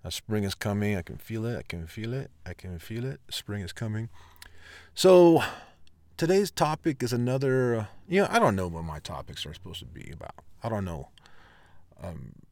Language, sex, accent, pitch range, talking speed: English, male, American, 85-110 Hz, 190 wpm